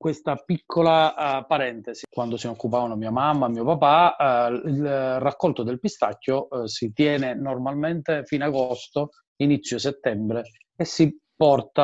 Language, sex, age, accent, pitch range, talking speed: Italian, male, 40-59, native, 120-160 Hz, 145 wpm